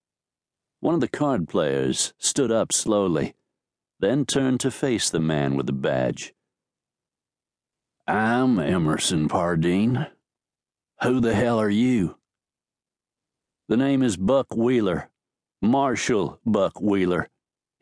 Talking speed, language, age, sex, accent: 110 wpm, English, 60-79, male, American